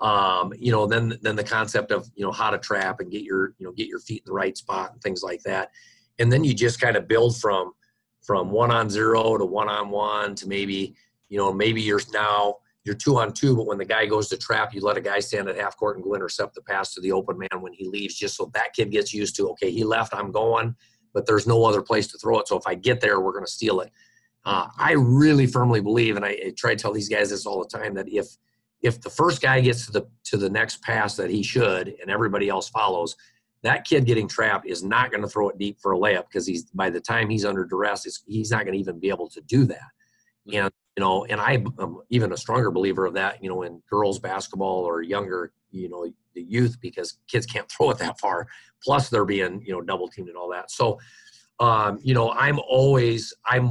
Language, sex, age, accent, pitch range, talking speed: English, male, 40-59, American, 100-125 Hz, 255 wpm